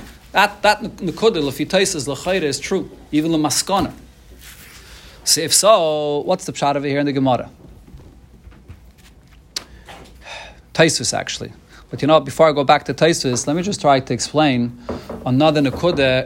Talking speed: 140 wpm